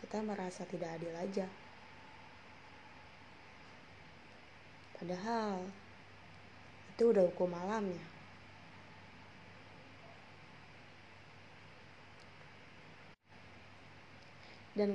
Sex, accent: female, native